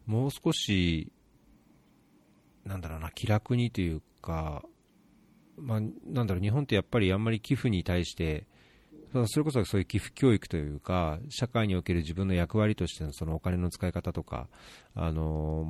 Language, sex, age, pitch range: Japanese, male, 40-59, 80-110 Hz